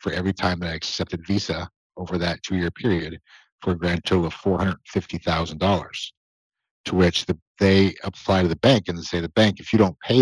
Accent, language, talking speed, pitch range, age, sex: American, English, 205 wpm, 85-100 Hz, 50-69, male